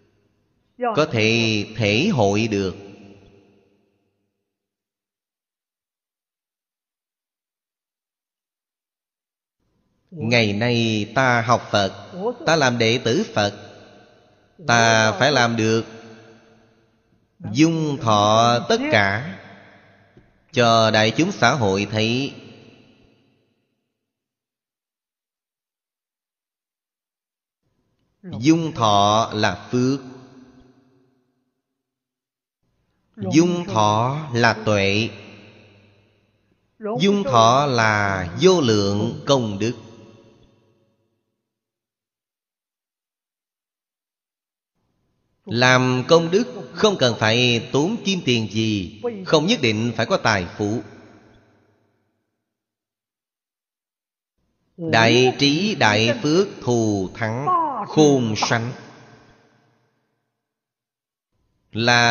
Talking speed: 70 wpm